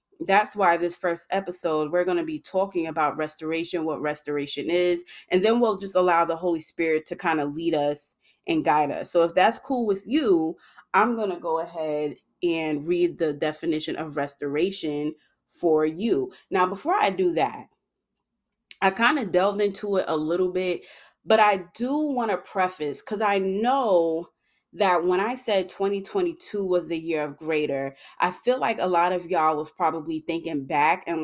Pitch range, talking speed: 155-210 Hz, 180 wpm